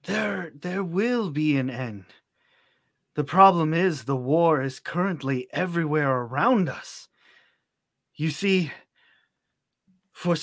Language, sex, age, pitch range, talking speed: English, male, 30-49, 140-185 Hz, 110 wpm